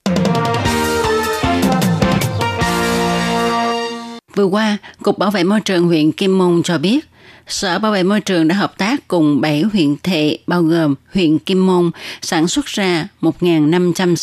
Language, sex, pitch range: Vietnamese, female, 160-205 Hz